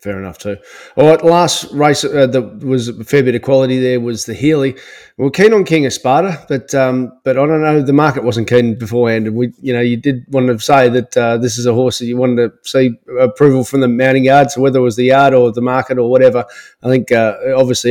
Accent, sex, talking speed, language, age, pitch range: Australian, male, 260 wpm, English, 30-49, 125-150 Hz